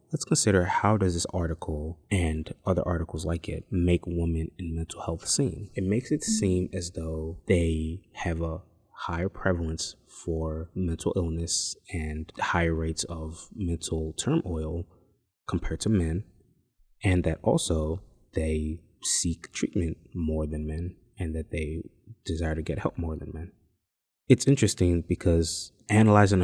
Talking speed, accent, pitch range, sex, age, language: 145 wpm, American, 85-100 Hz, male, 20-39, English